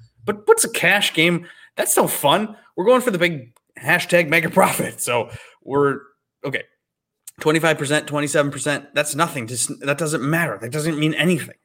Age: 20-39